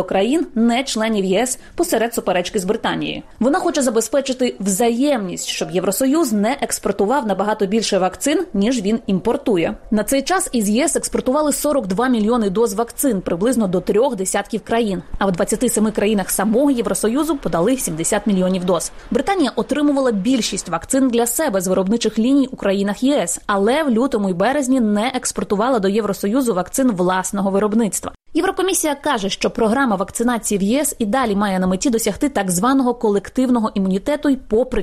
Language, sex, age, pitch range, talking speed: Ukrainian, female, 20-39, 200-265 Hz, 155 wpm